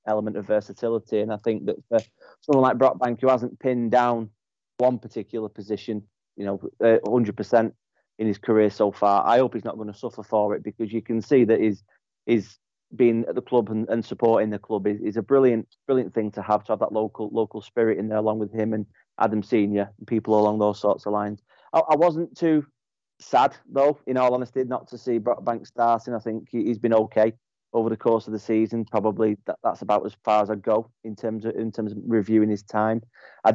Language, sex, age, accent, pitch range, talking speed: English, male, 30-49, British, 105-120 Hz, 220 wpm